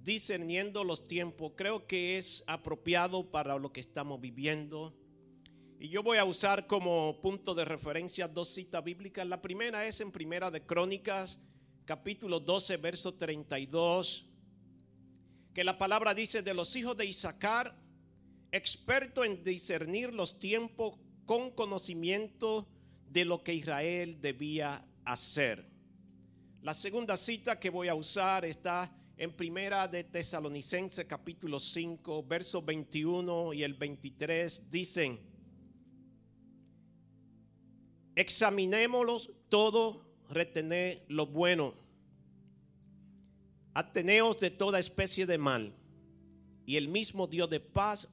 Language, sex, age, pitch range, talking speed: English, male, 50-69, 150-190 Hz, 115 wpm